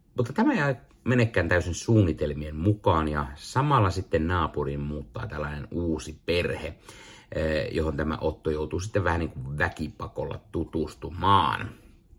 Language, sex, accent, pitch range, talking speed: Finnish, male, native, 75-110 Hz, 125 wpm